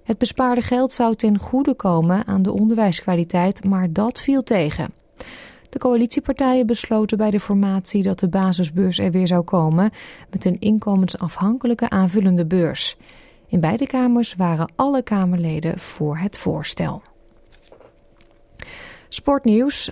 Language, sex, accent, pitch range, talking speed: Dutch, female, Dutch, 180-225 Hz, 125 wpm